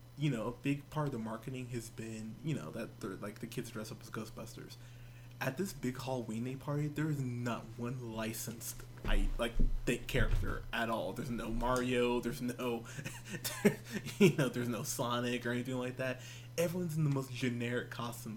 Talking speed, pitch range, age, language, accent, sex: 190 wpm, 120-145 Hz, 20-39, English, American, male